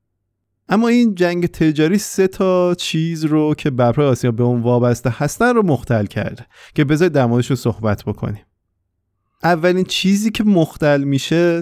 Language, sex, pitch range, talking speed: Persian, male, 120-160 Hz, 150 wpm